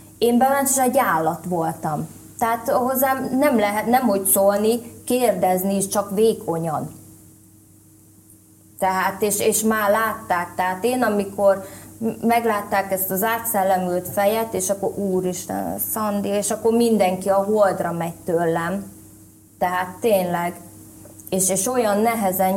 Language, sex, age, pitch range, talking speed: Hungarian, female, 20-39, 170-220 Hz, 125 wpm